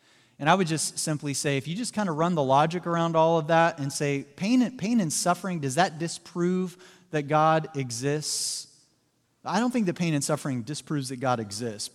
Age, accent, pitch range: 30-49, American, 135-175 Hz